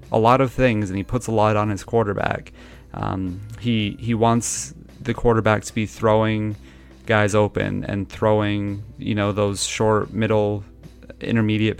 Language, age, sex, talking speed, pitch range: English, 30-49, male, 160 wpm, 100-115 Hz